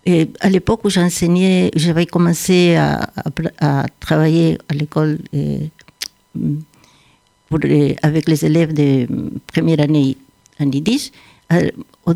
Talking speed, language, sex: 130 wpm, French, female